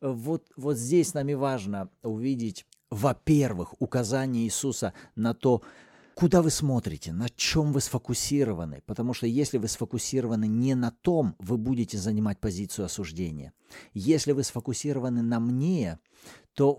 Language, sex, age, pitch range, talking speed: Russian, male, 40-59, 120-160 Hz, 135 wpm